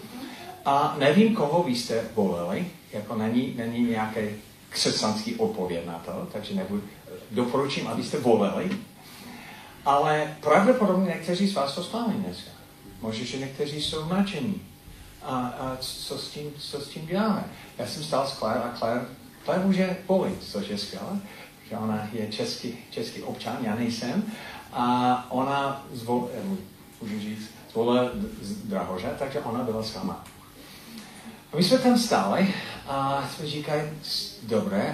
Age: 40-59